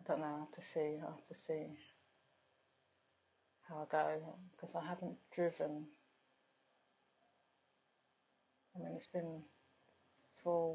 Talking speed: 130 wpm